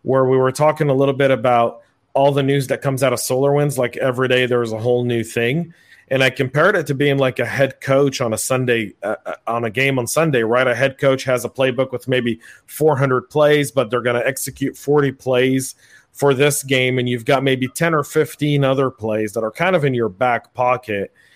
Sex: male